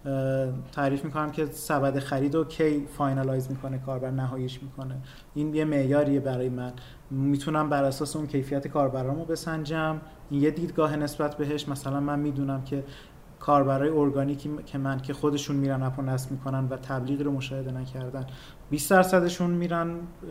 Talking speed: 145 wpm